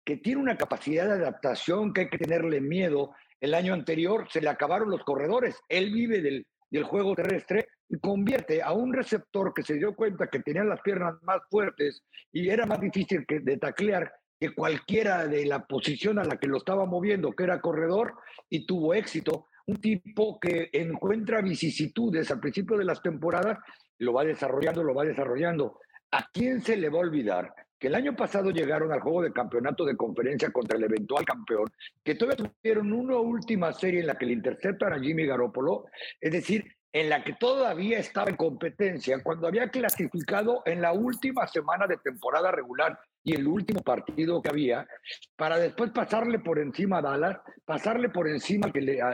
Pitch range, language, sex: 155-220 Hz, Spanish, male